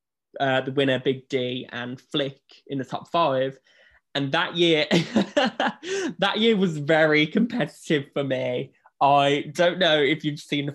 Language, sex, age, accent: English, male, 10-29, British